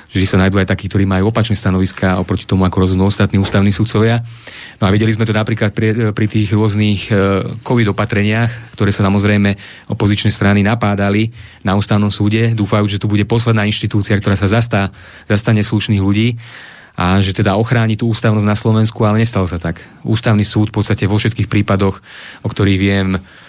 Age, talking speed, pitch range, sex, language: 30-49, 180 wpm, 100-110 Hz, male, Slovak